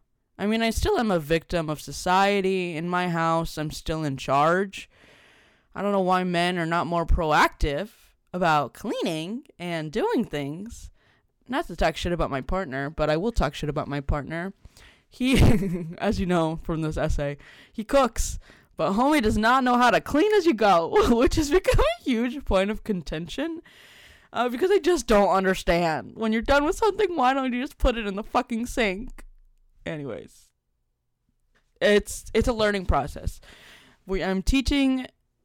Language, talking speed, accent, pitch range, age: English, 175 wpm, American, 160-235 Hz, 20-39